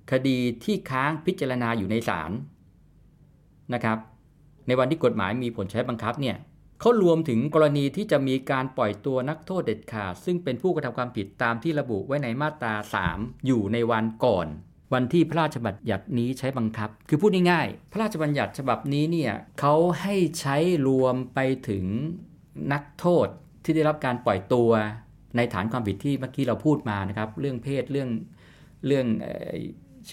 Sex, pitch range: male, 115-155 Hz